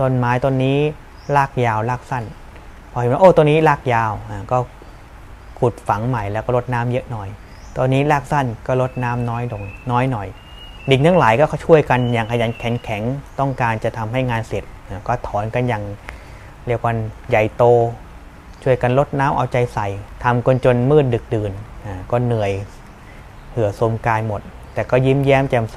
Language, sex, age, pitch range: Thai, male, 20-39, 110-130 Hz